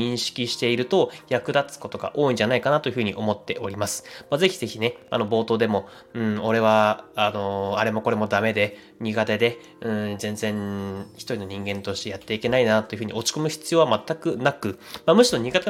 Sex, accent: male, native